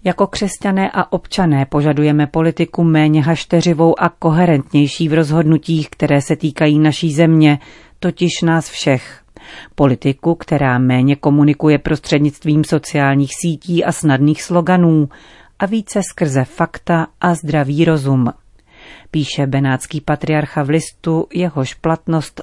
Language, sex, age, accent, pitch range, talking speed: Czech, female, 40-59, native, 145-170 Hz, 120 wpm